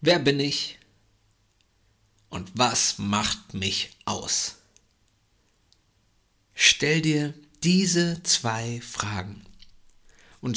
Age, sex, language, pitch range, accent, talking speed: 50-69, male, German, 105-140 Hz, German, 80 wpm